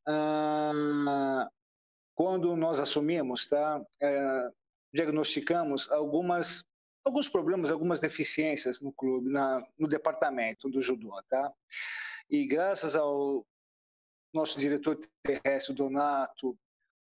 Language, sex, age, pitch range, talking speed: Portuguese, male, 50-69, 150-180 Hz, 100 wpm